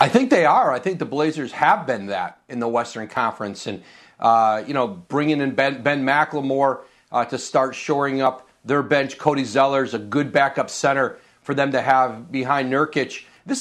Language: English